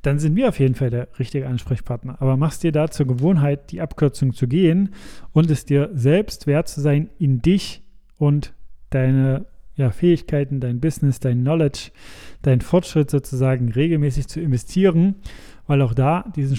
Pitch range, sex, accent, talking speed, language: 130-155 Hz, male, German, 165 wpm, German